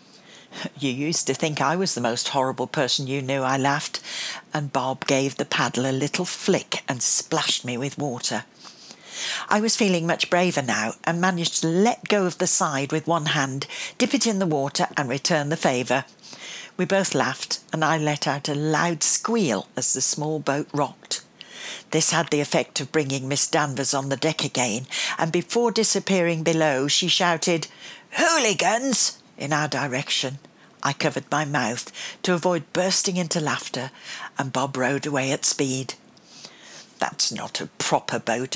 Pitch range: 135-170 Hz